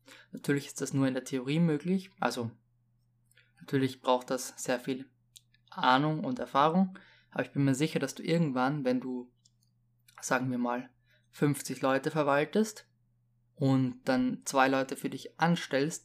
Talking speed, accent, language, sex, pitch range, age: 150 wpm, German, German, male, 120-145 Hz, 20-39